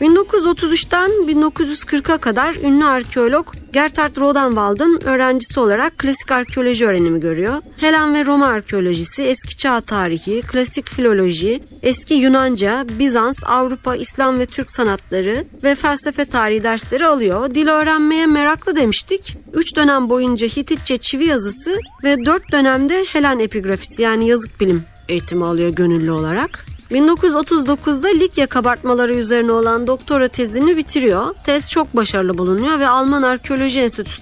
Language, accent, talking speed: Turkish, native, 130 wpm